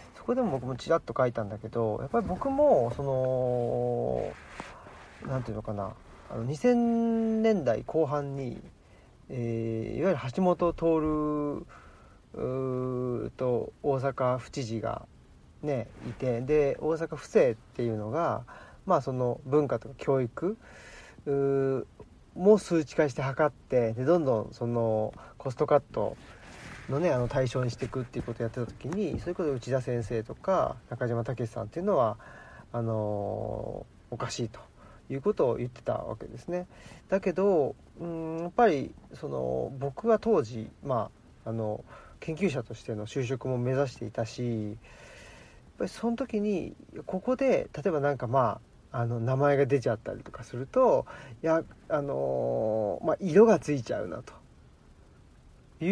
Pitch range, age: 115-160 Hz, 40-59